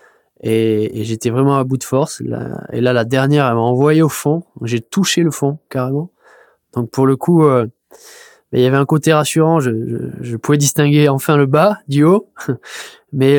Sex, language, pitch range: male, French, 115-150 Hz